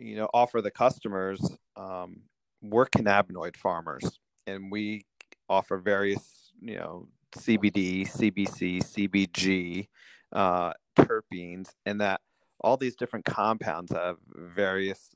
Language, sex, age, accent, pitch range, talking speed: English, male, 40-59, American, 90-105 Hz, 110 wpm